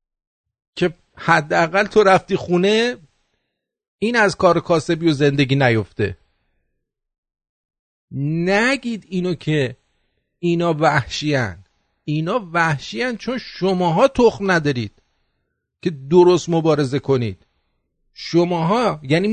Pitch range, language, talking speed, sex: 145-210 Hz, English, 85 wpm, male